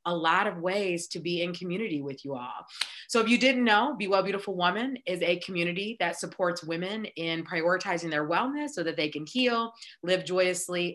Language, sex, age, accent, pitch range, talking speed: English, female, 30-49, American, 170-220 Hz, 205 wpm